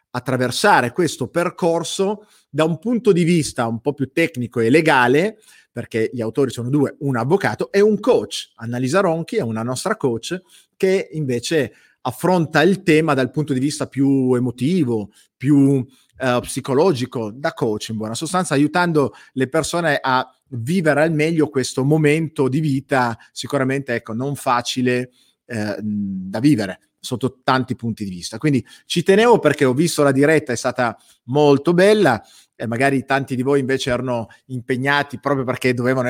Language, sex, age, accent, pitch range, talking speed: Italian, male, 30-49, native, 125-155 Hz, 155 wpm